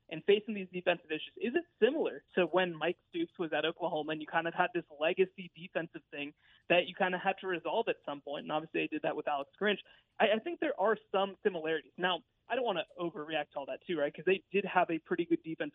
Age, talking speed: 20-39, 260 wpm